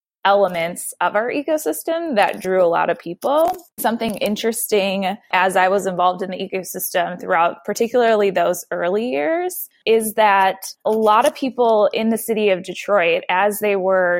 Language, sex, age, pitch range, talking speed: English, female, 20-39, 180-220 Hz, 160 wpm